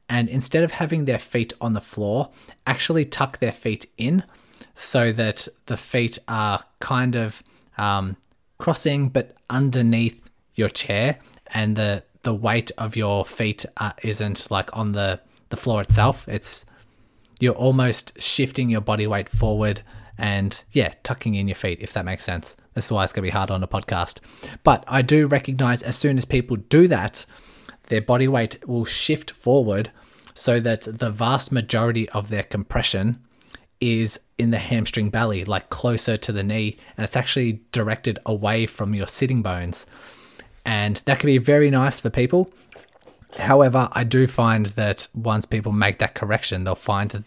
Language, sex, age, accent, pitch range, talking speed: English, male, 20-39, Australian, 105-125 Hz, 170 wpm